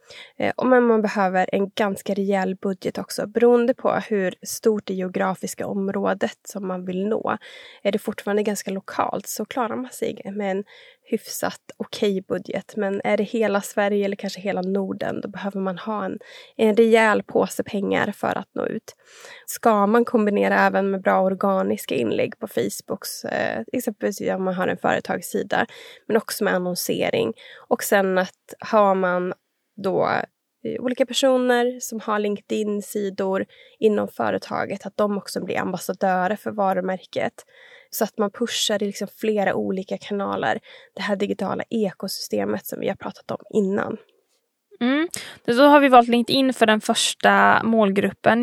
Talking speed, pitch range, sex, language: 155 wpm, 195-240 Hz, female, Swedish